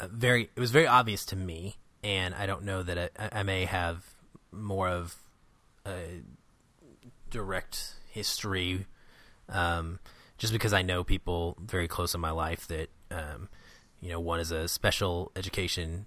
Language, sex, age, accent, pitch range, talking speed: English, male, 30-49, American, 90-110 Hz, 155 wpm